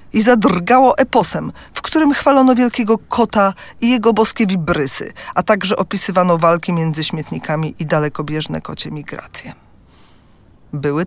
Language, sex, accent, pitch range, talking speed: Polish, female, native, 165-240 Hz, 125 wpm